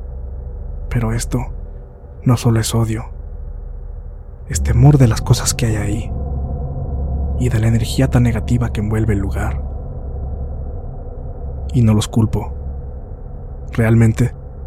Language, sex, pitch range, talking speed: Spanish, male, 80-115 Hz, 120 wpm